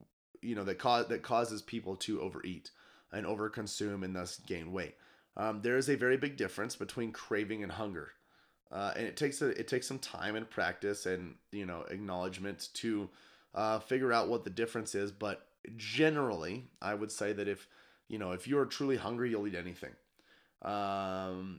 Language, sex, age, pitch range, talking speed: English, male, 30-49, 95-115 Hz, 190 wpm